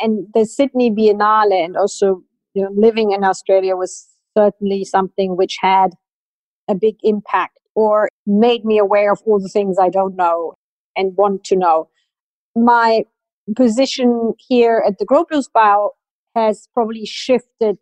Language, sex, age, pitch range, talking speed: English, female, 40-59, 195-220 Hz, 140 wpm